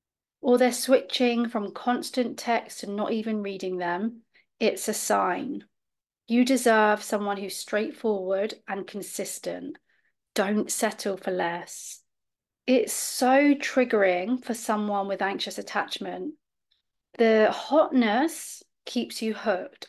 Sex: female